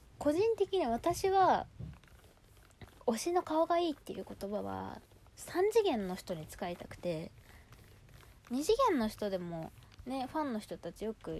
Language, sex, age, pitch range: Japanese, female, 20-39, 180-250 Hz